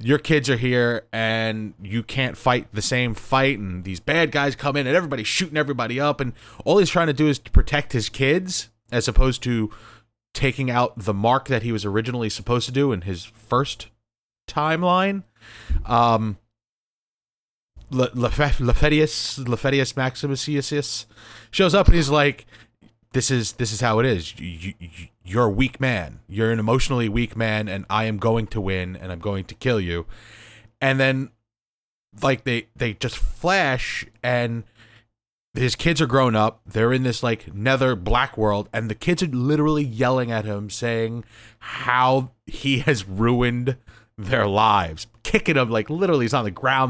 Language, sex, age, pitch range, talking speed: English, male, 30-49, 110-135 Hz, 170 wpm